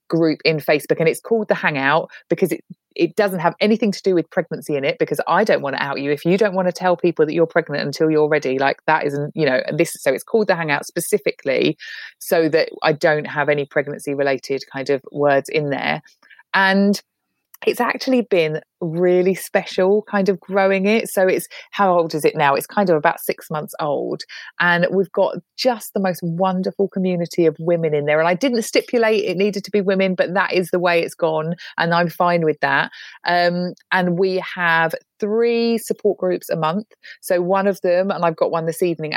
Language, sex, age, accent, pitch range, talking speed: English, female, 30-49, British, 150-190 Hz, 215 wpm